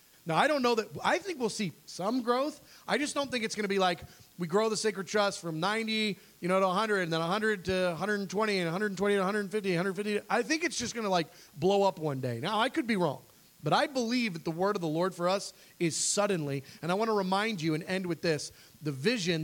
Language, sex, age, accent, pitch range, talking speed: English, male, 30-49, American, 150-205 Hz, 255 wpm